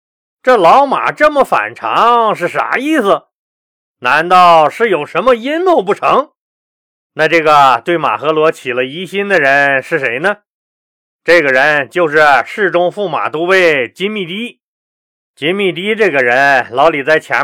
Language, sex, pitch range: Chinese, male, 145-190 Hz